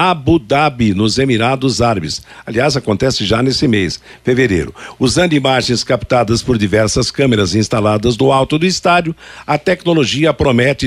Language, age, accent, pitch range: Portuguese, 60-79, Brazilian, 120-165 Hz